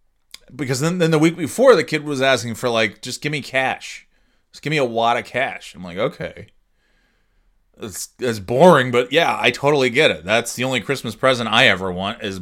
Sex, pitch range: male, 100-135 Hz